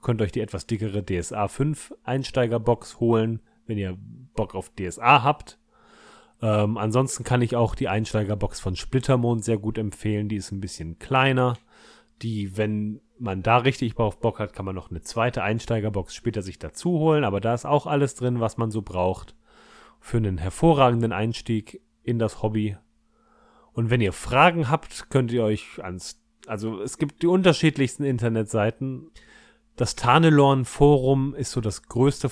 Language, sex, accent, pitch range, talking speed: German, male, German, 105-130 Hz, 165 wpm